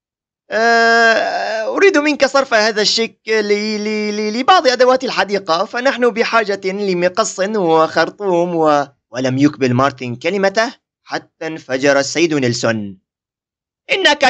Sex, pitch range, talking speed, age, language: male, 140-230 Hz, 90 wpm, 30-49, Arabic